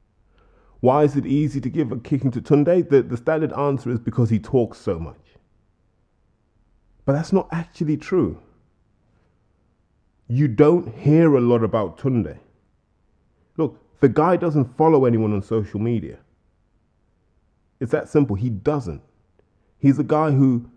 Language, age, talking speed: English, 20-39, 145 wpm